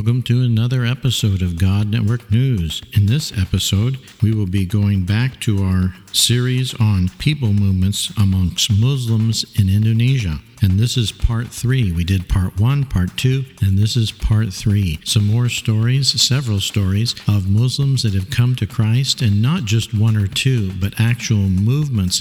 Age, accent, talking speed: 50-69, American, 170 wpm